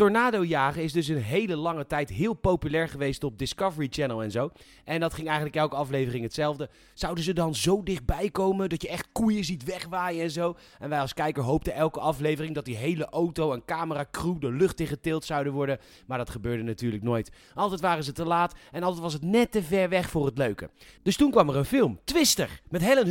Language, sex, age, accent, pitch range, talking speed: Dutch, male, 30-49, Dutch, 150-205 Hz, 225 wpm